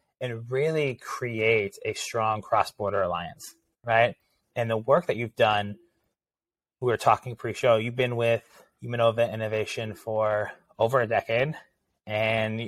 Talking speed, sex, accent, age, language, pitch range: 135 wpm, male, American, 30-49, English, 105-120 Hz